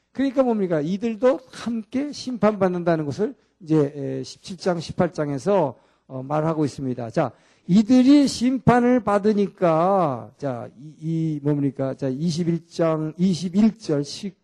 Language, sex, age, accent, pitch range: Korean, male, 50-69, native, 150-205 Hz